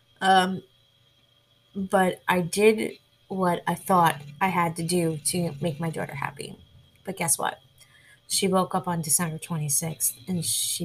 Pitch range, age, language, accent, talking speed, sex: 150-190 Hz, 20-39, English, American, 150 wpm, female